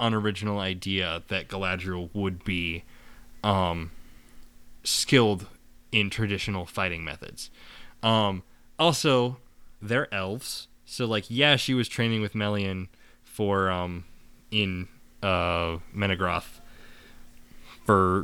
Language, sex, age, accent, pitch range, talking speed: English, male, 20-39, American, 90-125 Hz, 100 wpm